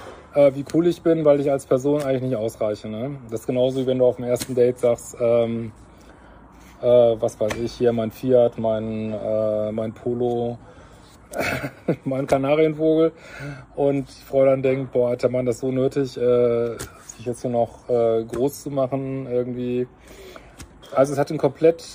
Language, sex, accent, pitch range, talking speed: German, male, German, 125-140 Hz, 175 wpm